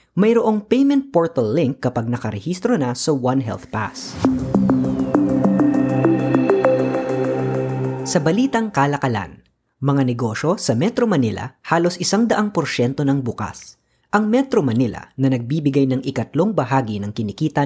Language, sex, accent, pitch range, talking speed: Filipino, female, native, 115-180 Hz, 120 wpm